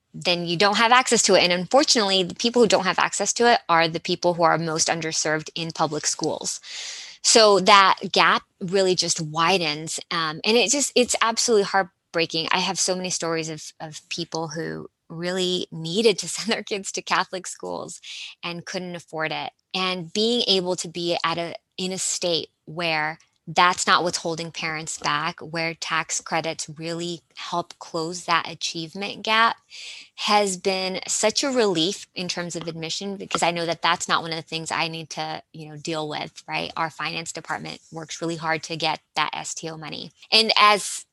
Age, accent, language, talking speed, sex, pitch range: 20-39, American, English, 185 wpm, female, 165-195 Hz